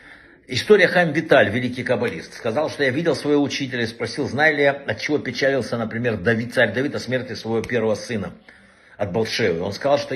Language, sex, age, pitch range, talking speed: Russian, male, 60-79, 115-145 Hz, 195 wpm